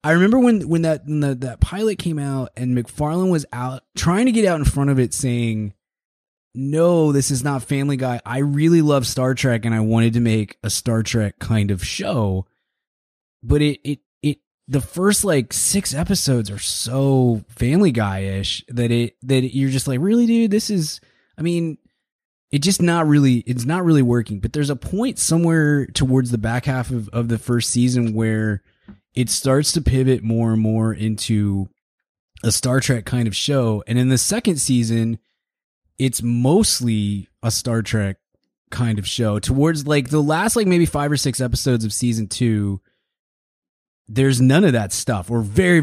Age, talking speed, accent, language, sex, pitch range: 20-39, 185 wpm, American, English, male, 110-145 Hz